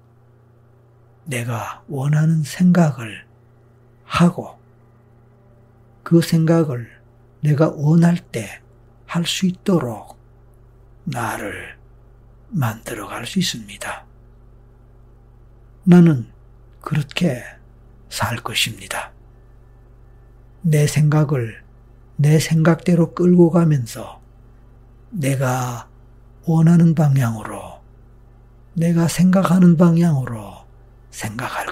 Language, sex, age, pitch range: Korean, male, 60-79, 120-145 Hz